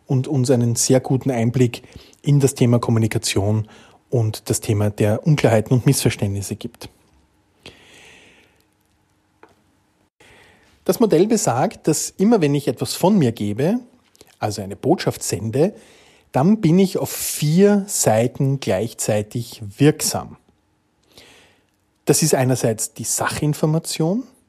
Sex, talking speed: male, 115 wpm